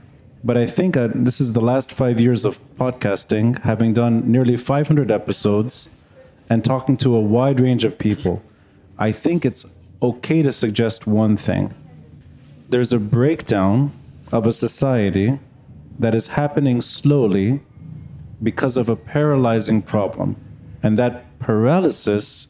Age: 30-49